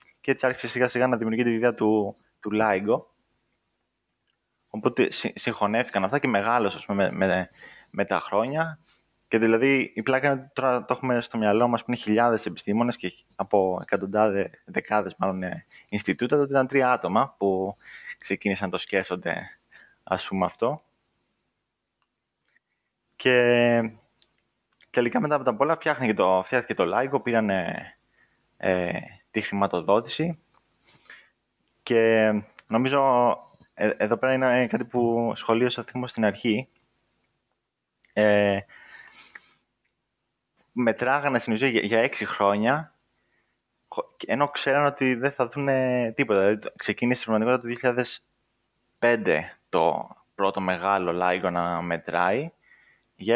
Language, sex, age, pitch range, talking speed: Greek, male, 20-39, 100-125 Hz, 125 wpm